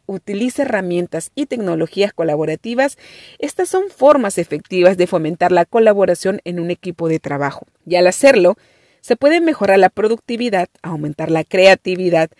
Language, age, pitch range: Spanish, 40-59, 170-230 Hz